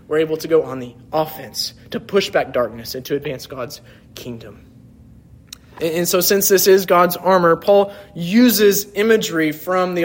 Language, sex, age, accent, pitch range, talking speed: English, male, 20-39, American, 140-195 Hz, 165 wpm